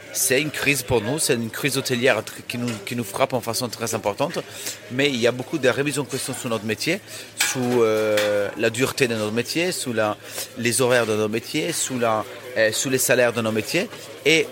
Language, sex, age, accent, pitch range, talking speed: French, male, 30-49, French, 110-135 Hz, 205 wpm